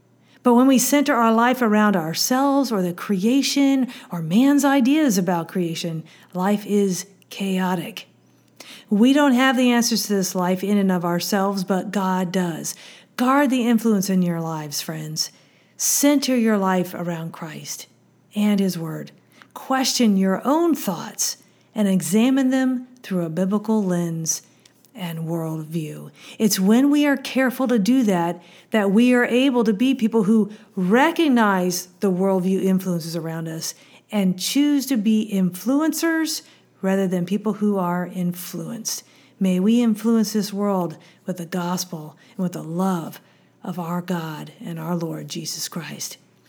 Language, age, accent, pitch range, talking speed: English, 50-69, American, 180-240 Hz, 150 wpm